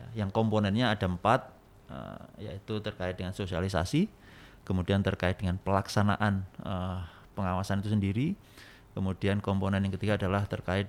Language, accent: Indonesian, native